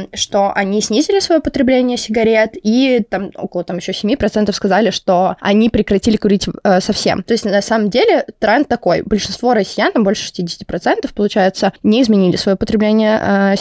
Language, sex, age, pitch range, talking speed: Russian, female, 20-39, 200-230 Hz, 165 wpm